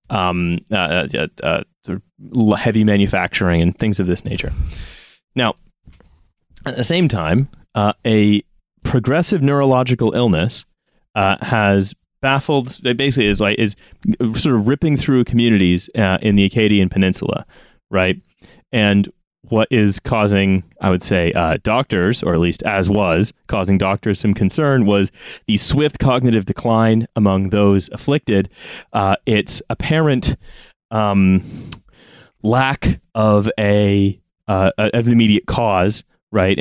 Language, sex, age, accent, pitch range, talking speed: English, male, 30-49, American, 100-120 Hz, 130 wpm